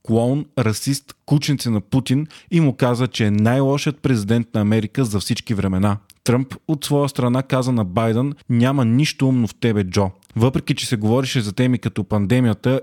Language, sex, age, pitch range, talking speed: Bulgarian, male, 30-49, 115-130 Hz, 180 wpm